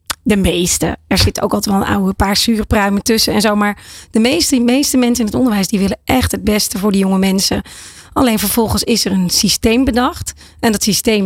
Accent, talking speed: Dutch, 225 wpm